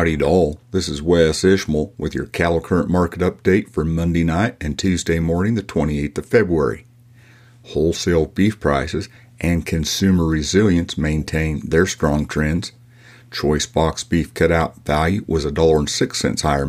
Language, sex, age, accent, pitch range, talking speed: English, male, 50-69, American, 75-100 Hz, 145 wpm